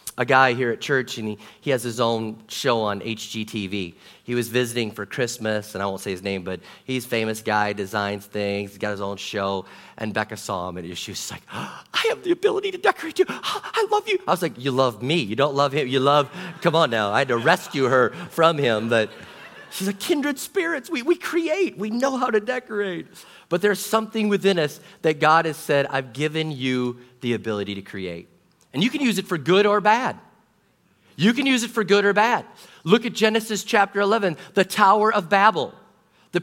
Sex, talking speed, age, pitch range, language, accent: male, 220 wpm, 30-49, 135-225 Hz, English, American